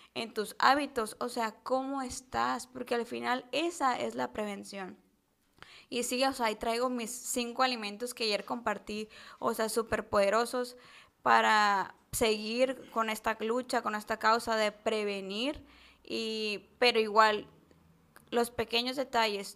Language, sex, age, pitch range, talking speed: Spanish, female, 20-39, 220-255 Hz, 140 wpm